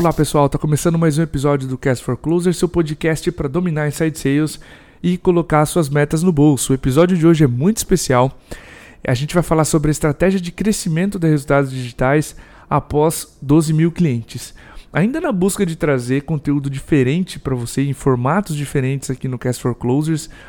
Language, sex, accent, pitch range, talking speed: Portuguese, male, Brazilian, 135-165 Hz, 185 wpm